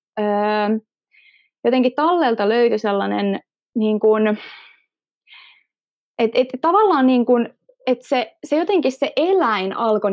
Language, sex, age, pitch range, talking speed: Finnish, female, 20-39, 215-260 Hz, 100 wpm